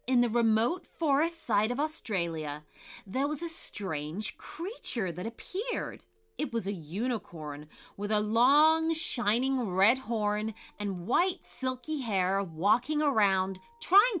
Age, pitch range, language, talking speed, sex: 30-49, 190-300 Hz, English, 130 wpm, female